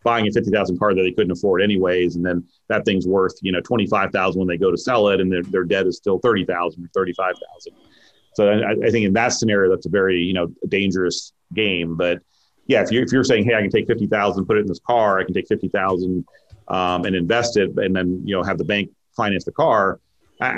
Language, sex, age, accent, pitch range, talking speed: English, male, 30-49, American, 90-110 Hz, 260 wpm